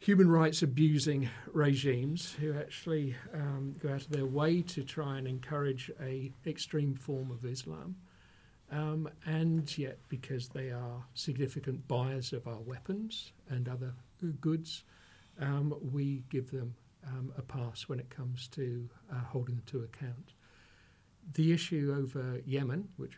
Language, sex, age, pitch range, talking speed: English, male, 50-69, 120-140 Hz, 145 wpm